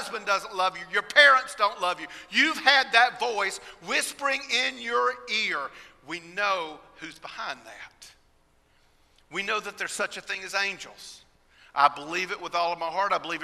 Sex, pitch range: male, 160-205 Hz